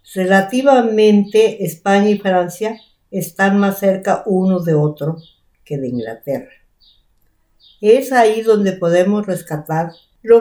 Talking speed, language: 110 wpm, Spanish